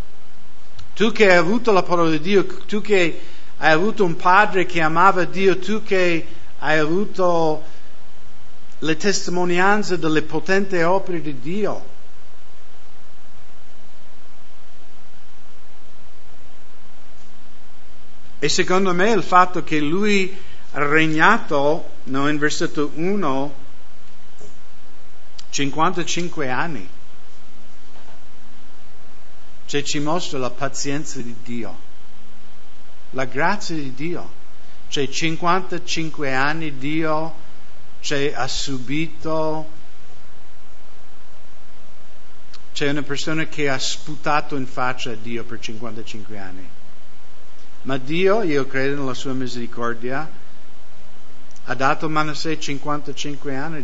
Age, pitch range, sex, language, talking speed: 60-79, 100-165 Hz, male, English, 95 wpm